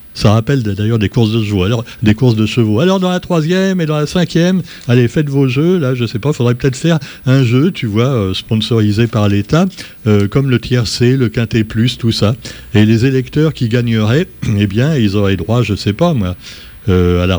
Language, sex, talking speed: French, male, 220 wpm